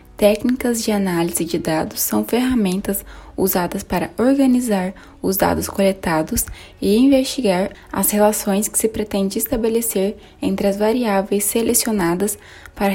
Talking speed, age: 120 wpm, 10-29